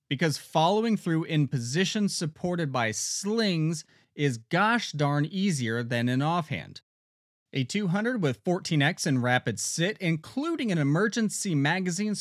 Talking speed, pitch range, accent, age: 130 wpm, 130-185 Hz, American, 30-49